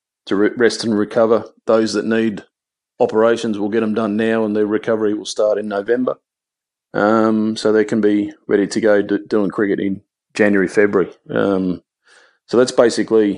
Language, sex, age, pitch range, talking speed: English, male, 40-59, 100-110 Hz, 170 wpm